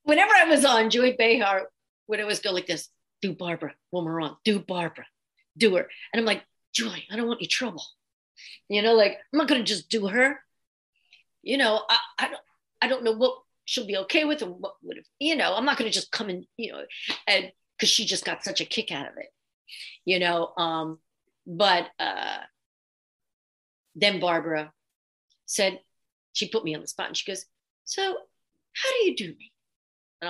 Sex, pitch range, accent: female, 175-240 Hz, American